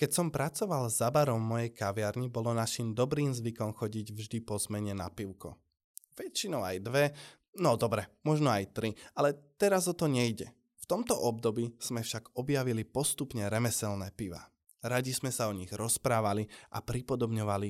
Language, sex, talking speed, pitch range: Slovak, male, 160 wpm, 105-140 Hz